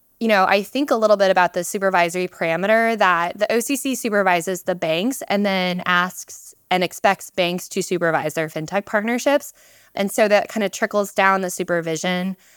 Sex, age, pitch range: female, 20-39, 175-220 Hz